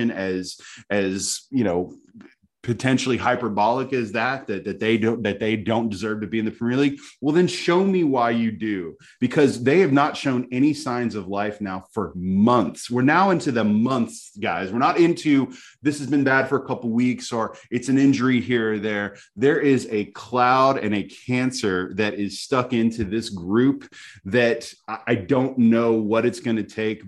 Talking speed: 195 wpm